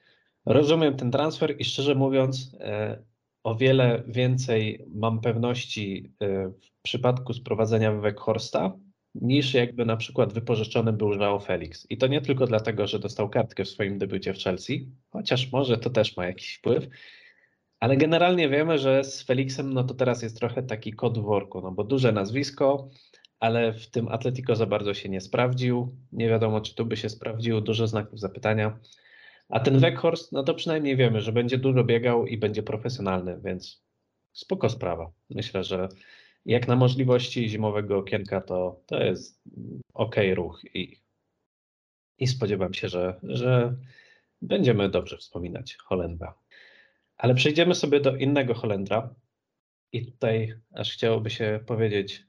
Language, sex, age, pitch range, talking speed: Polish, male, 20-39, 105-130 Hz, 155 wpm